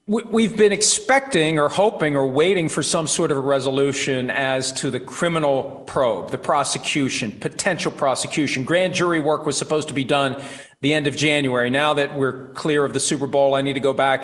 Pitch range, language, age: 135-175 Hz, English, 40-59